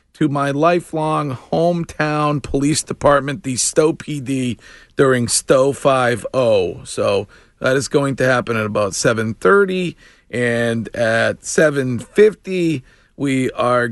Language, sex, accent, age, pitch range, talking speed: English, male, American, 40-59, 115-150 Hz, 110 wpm